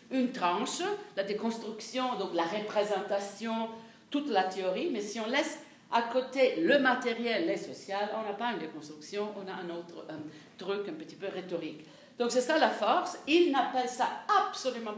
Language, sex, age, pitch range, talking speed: French, female, 50-69, 195-260 Hz, 170 wpm